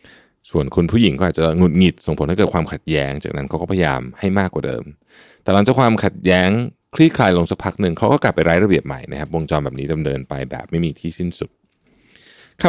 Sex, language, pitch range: male, Thai, 75-100 Hz